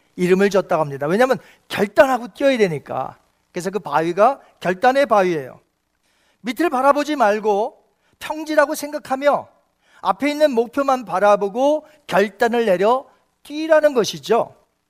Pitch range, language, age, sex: 210-290 Hz, Korean, 40-59, male